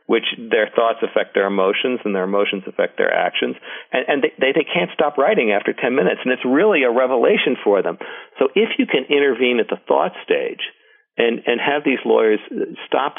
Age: 50-69